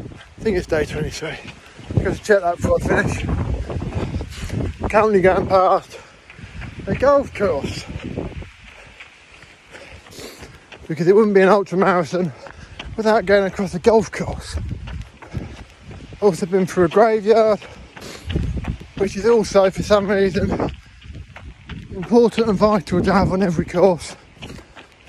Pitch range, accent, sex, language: 165-200 Hz, British, male, English